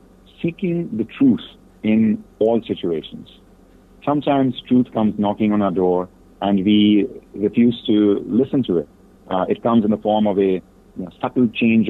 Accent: Indian